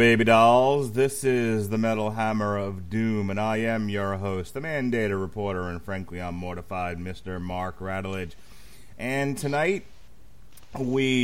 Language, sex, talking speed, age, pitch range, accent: English, male, 145 wpm, 30-49, 100-120 Hz, American